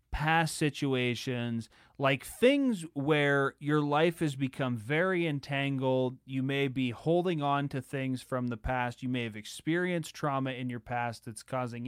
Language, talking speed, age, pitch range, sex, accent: English, 155 wpm, 30-49, 130-165 Hz, male, American